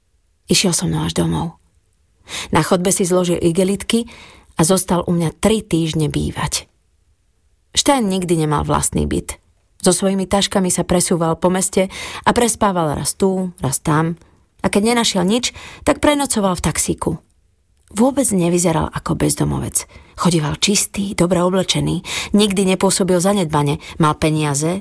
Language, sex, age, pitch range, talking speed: Slovak, female, 30-49, 150-195 Hz, 135 wpm